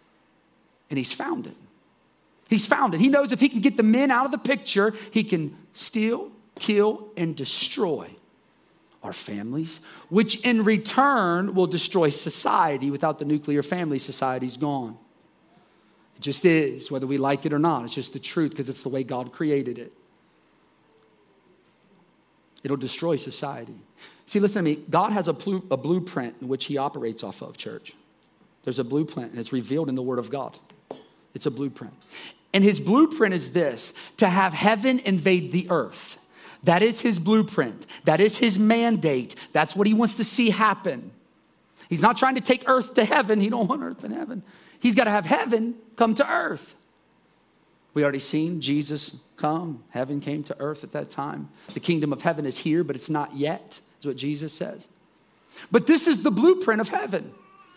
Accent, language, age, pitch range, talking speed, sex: American, English, 40-59, 145-225 Hz, 180 wpm, male